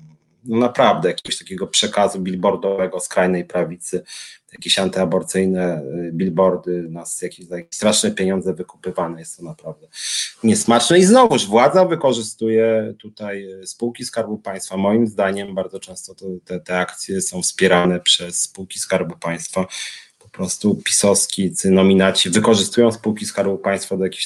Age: 30-49